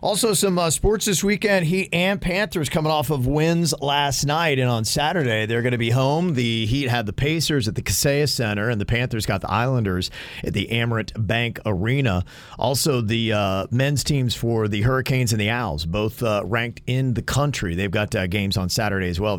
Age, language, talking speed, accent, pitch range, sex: 40-59, English, 210 wpm, American, 110-145 Hz, male